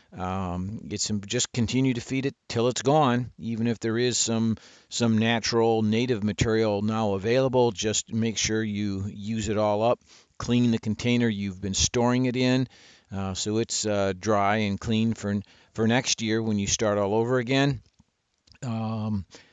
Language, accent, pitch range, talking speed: English, American, 100-115 Hz, 170 wpm